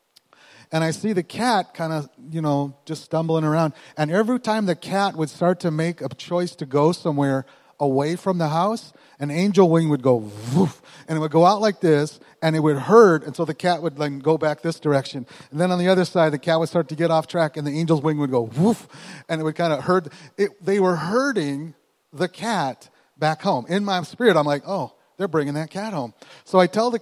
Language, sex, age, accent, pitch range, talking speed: English, male, 30-49, American, 145-180 Hz, 230 wpm